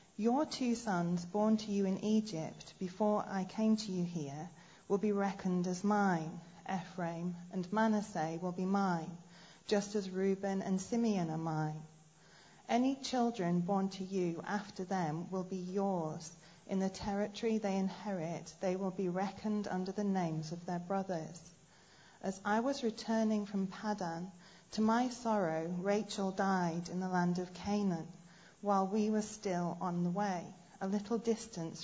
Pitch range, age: 175-210 Hz, 40-59